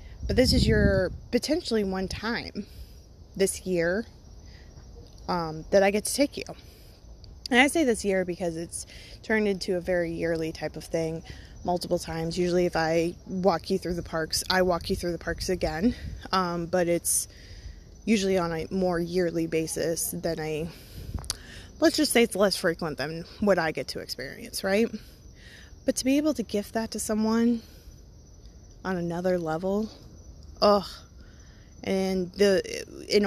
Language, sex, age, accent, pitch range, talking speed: English, female, 20-39, American, 170-220 Hz, 160 wpm